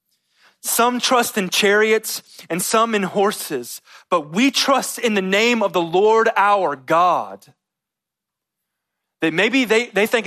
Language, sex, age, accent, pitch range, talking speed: English, male, 30-49, American, 150-210 Hz, 140 wpm